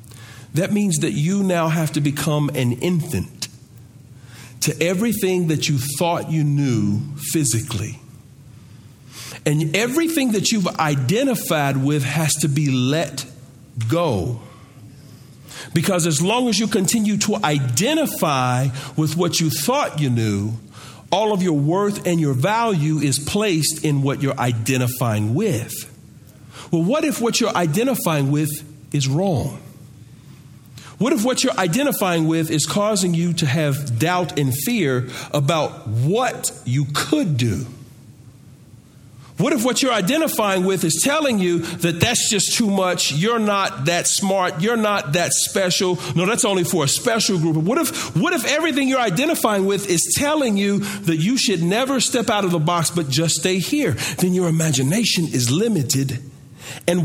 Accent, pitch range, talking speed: American, 135-190 Hz, 150 wpm